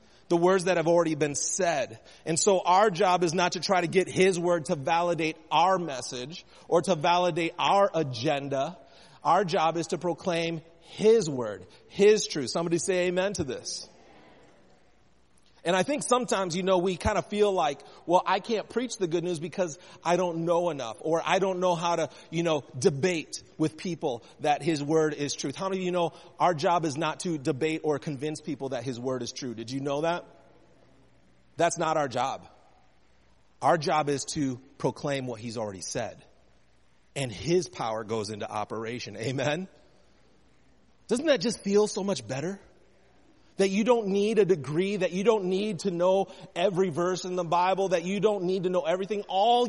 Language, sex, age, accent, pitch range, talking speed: English, male, 30-49, American, 150-195 Hz, 190 wpm